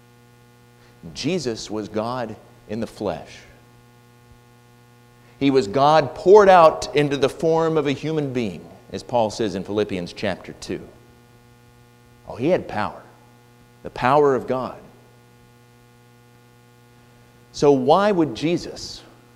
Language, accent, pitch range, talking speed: English, American, 120-140 Hz, 115 wpm